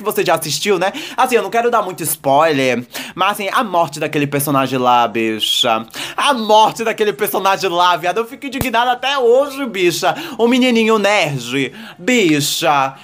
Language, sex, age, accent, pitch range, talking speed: Portuguese, male, 20-39, Brazilian, 145-230 Hz, 165 wpm